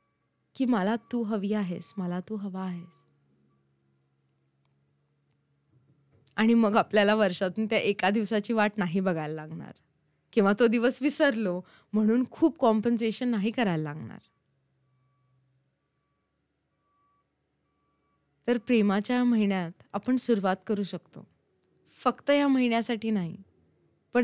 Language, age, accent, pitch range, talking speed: Marathi, 20-39, native, 150-225 Hz, 85 wpm